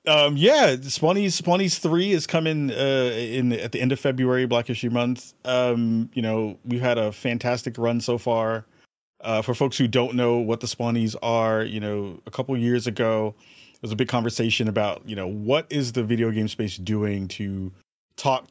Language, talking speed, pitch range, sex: English, 205 wpm, 110-130 Hz, male